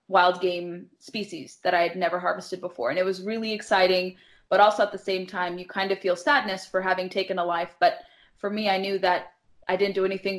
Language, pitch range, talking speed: English, 180-205 Hz, 230 wpm